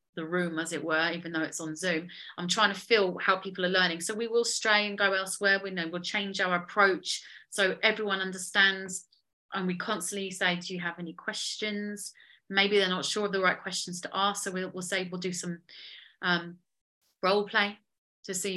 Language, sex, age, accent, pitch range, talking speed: English, female, 30-49, British, 185-275 Hz, 210 wpm